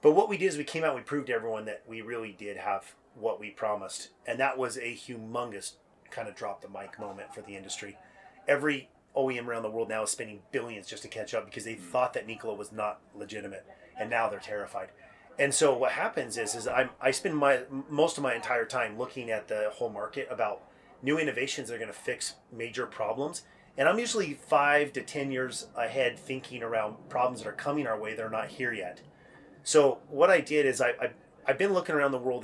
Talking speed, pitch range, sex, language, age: 230 wpm, 115-140 Hz, male, English, 30-49